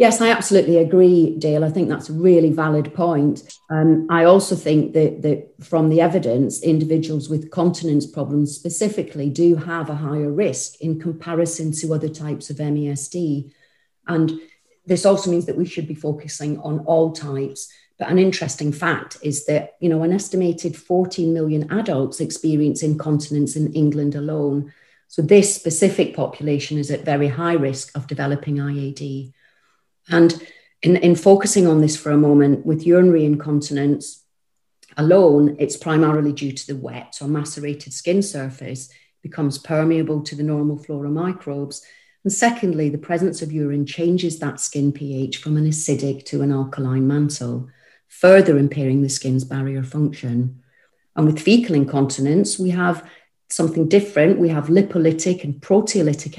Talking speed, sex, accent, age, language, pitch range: 155 wpm, female, British, 40-59, English, 145-170 Hz